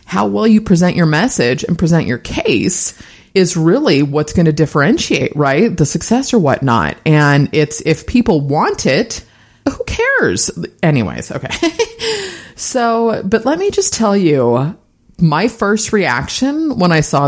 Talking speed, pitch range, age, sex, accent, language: 155 wpm, 145-245 Hz, 30-49, female, American, English